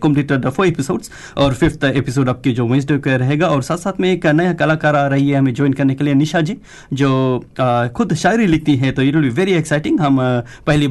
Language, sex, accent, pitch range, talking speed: Hindi, male, native, 130-155 Hz, 105 wpm